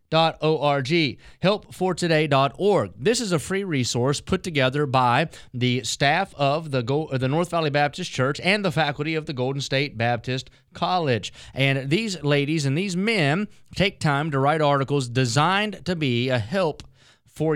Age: 30-49